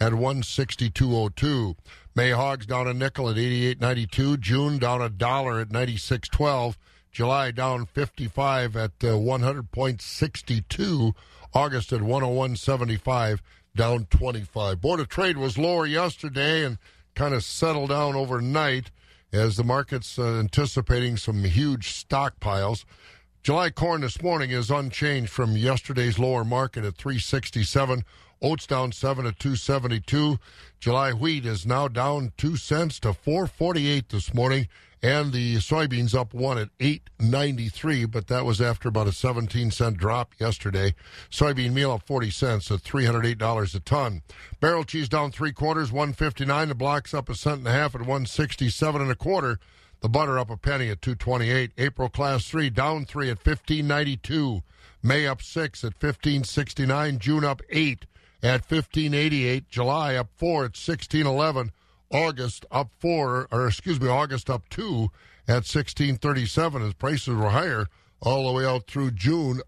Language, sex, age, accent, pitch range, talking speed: English, male, 60-79, American, 115-140 Hz, 145 wpm